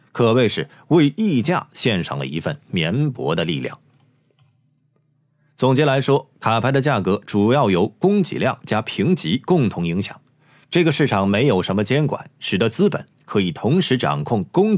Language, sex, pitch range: Chinese, male, 130-155 Hz